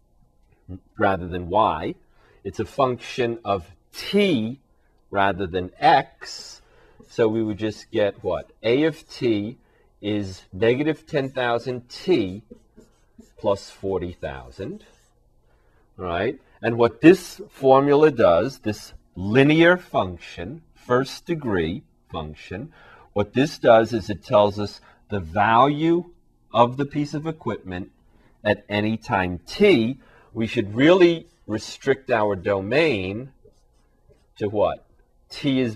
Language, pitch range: English, 95-130 Hz